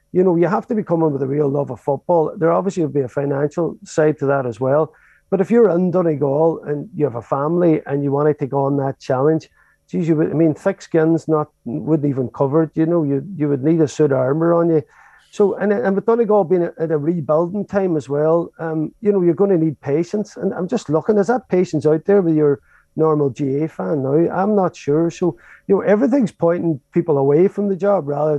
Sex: male